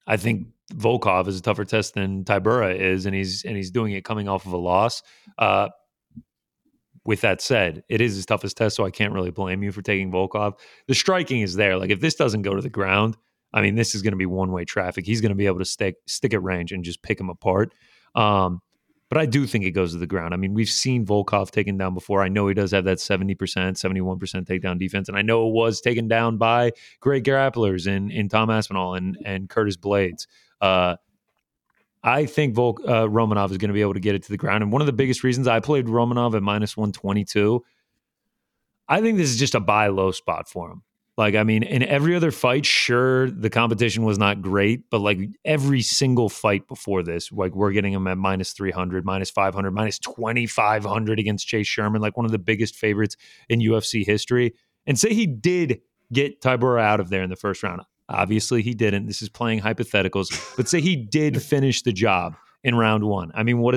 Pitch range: 95-120 Hz